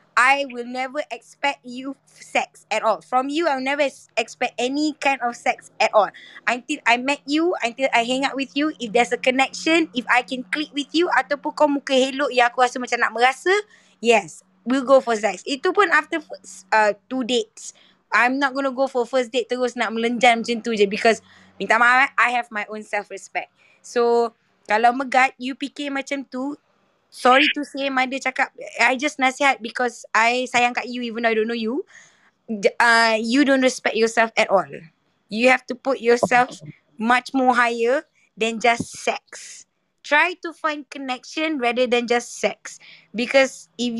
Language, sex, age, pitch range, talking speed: Malay, female, 20-39, 230-275 Hz, 185 wpm